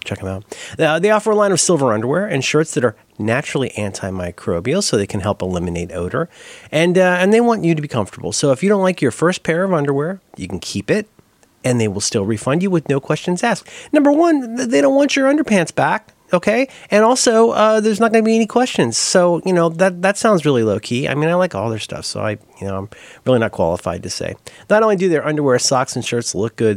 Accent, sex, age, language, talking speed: American, male, 30-49, English, 250 wpm